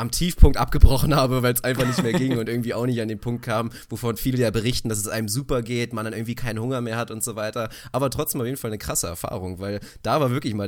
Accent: German